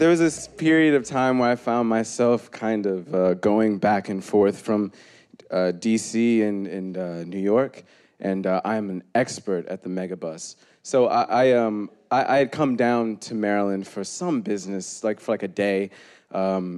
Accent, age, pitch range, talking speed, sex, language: American, 20-39, 100-135 Hz, 190 wpm, male, English